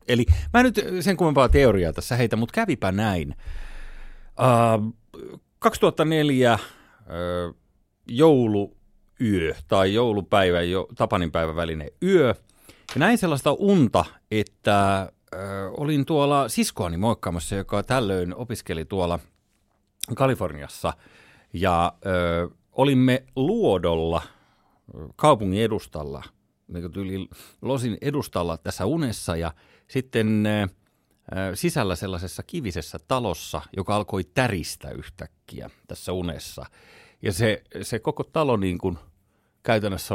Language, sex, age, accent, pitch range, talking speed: Finnish, male, 40-59, native, 85-120 Hz, 95 wpm